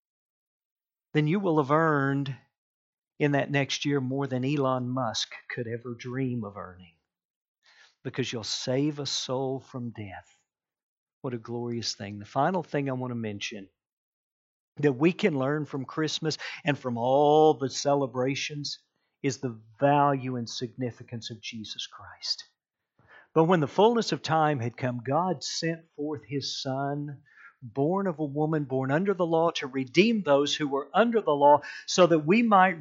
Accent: American